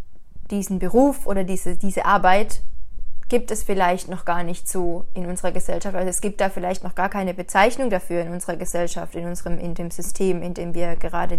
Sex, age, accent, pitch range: female, 20-39, German, 175-190 Hz